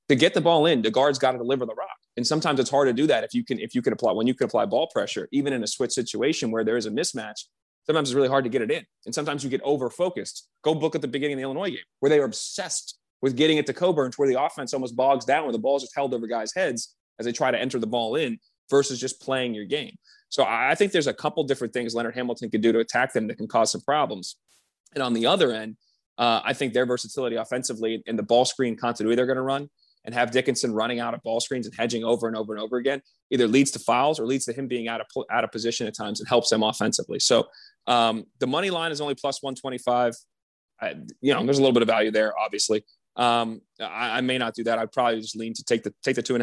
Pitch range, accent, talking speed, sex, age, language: 115-135 Hz, American, 280 wpm, male, 20-39, English